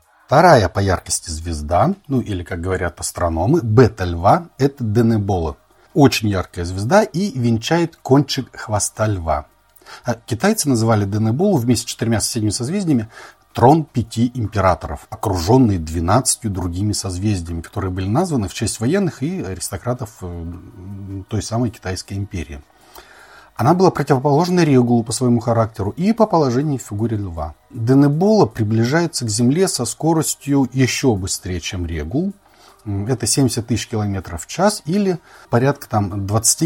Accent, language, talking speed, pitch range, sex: native, Russian, 130 wpm, 95-145 Hz, male